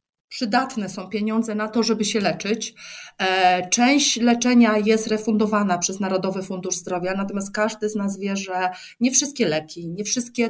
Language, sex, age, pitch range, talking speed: Polish, female, 30-49, 200-250 Hz, 155 wpm